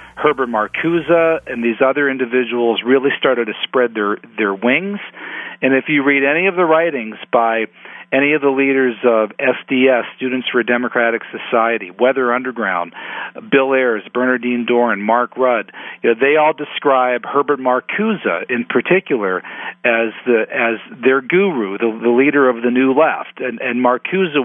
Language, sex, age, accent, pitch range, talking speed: English, male, 50-69, American, 115-135 Hz, 160 wpm